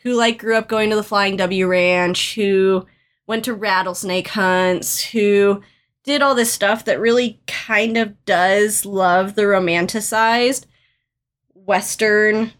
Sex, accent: female, American